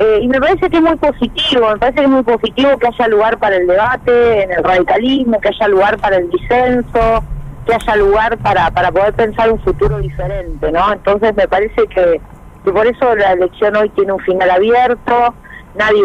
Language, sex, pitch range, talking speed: Spanish, female, 190-240 Hz, 205 wpm